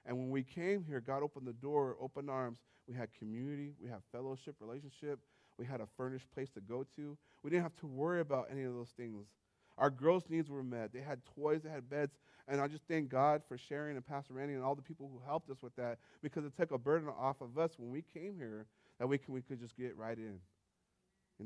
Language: English